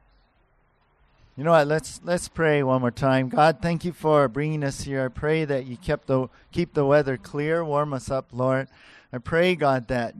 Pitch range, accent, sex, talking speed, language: 125-155 Hz, American, male, 200 wpm, English